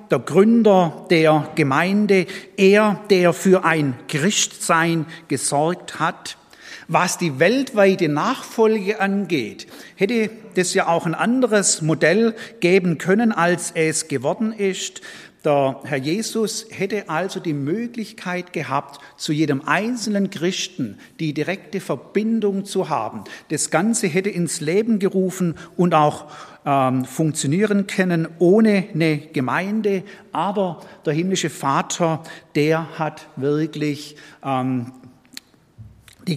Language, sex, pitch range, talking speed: German, male, 150-195 Hz, 110 wpm